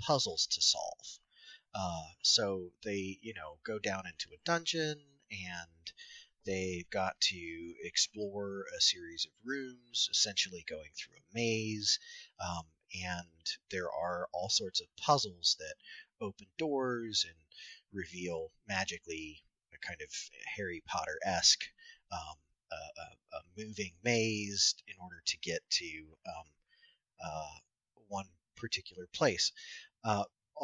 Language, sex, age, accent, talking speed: English, male, 30-49, American, 120 wpm